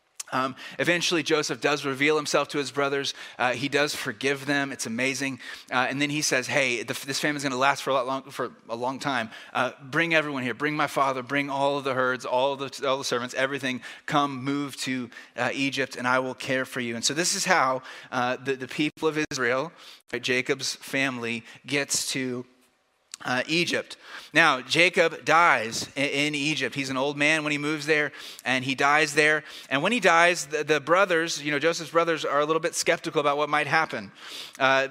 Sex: male